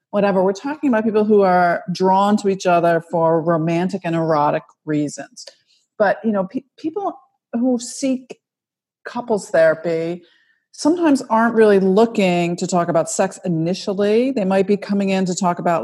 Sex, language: female, English